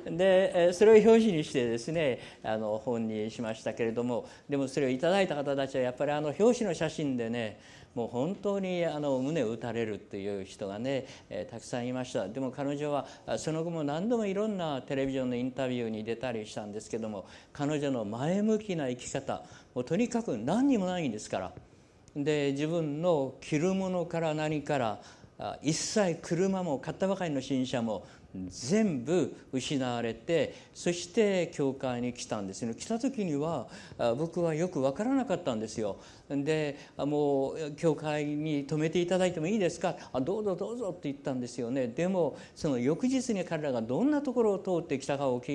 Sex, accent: male, native